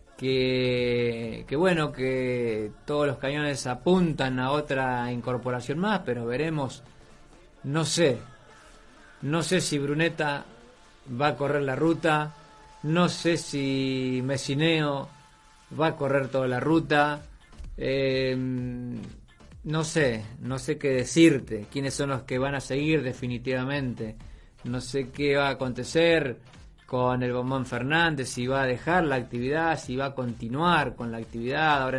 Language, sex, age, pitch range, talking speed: Spanish, male, 30-49, 125-150 Hz, 140 wpm